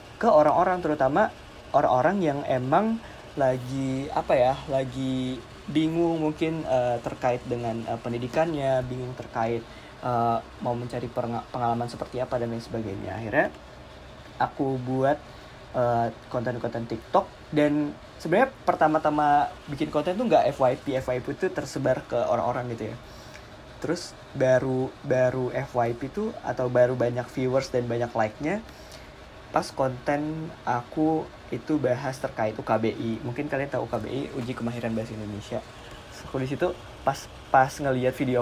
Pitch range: 120-150 Hz